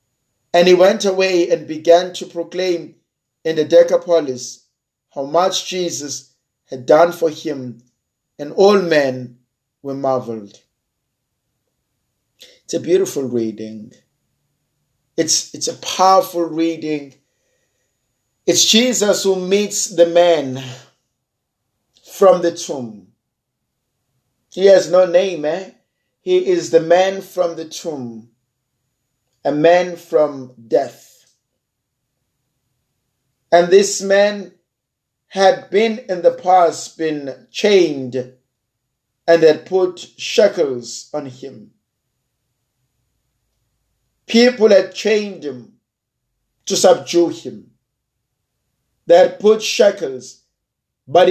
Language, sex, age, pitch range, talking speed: English, male, 50-69, 125-180 Hz, 100 wpm